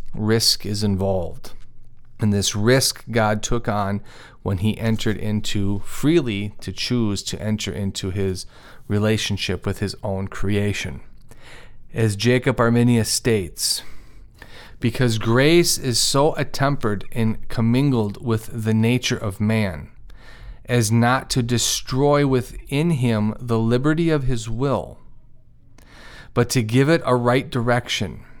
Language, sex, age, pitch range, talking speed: English, male, 40-59, 105-130 Hz, 125 wpm